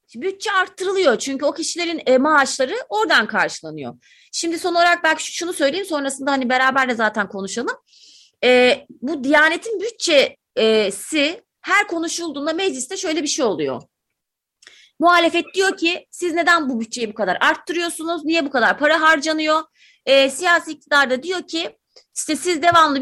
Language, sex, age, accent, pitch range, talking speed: Turkish, female, 30-49, native, 275-360 Hz, 145 wpm